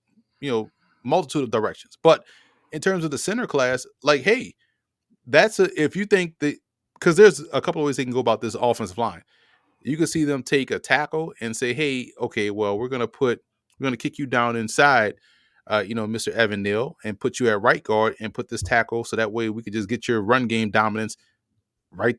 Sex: male